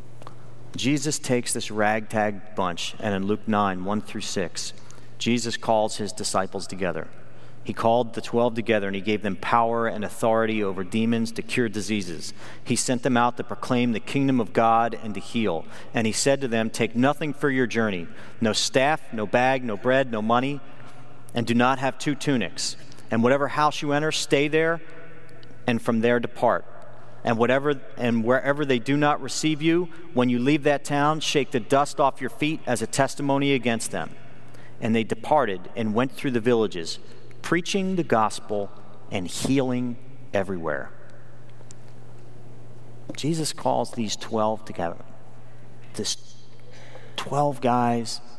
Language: English